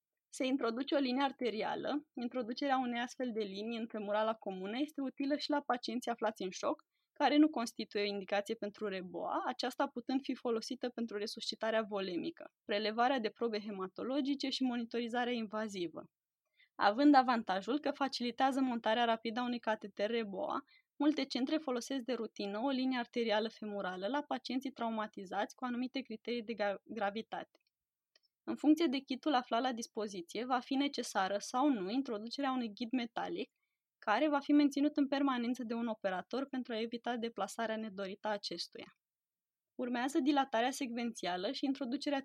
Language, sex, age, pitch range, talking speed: Romanian, female, 20-39, 215-275 Hz, 150 wpm